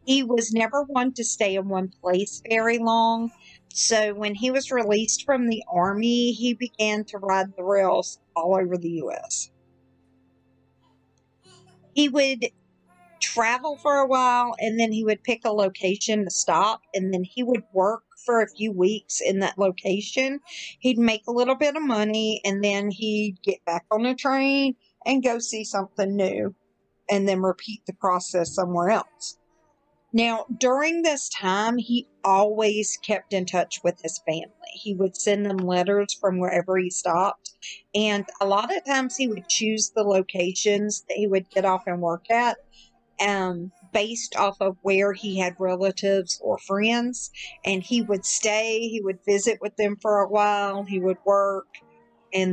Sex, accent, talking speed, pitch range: female, American, 170 wpm, 190-235 Hz